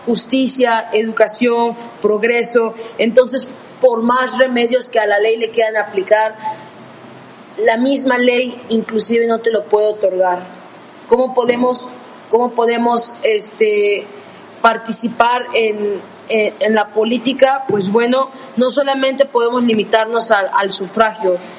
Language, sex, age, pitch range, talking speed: Spanish, female, 20-39, 220-245 Hz, 110 wpm